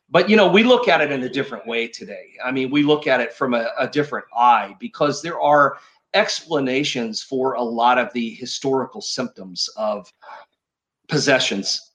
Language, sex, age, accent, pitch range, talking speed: English, male, 40-59, American, 130-170 Hz, 180 wpm